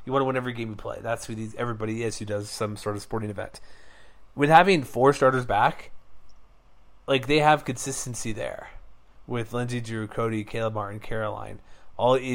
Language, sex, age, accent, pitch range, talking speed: English, male, 30-49, American, 115-135 Hz, 185 wpm